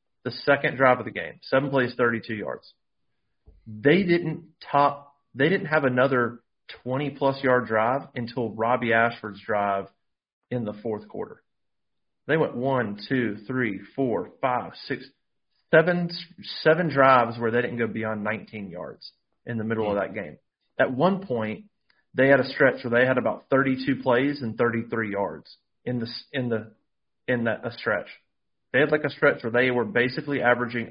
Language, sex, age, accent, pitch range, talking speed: English, male, 30-49, American, 115-150 Hz, 165 wpm